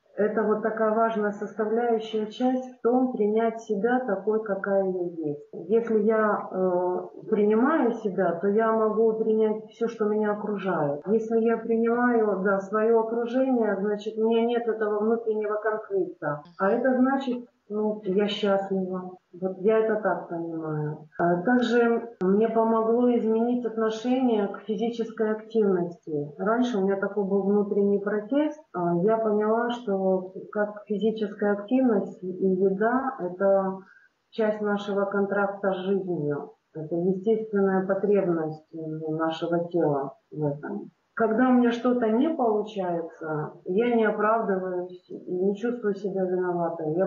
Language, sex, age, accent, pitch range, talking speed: Russian, female, 30-49, native, 190-225 Hz, 125 wpm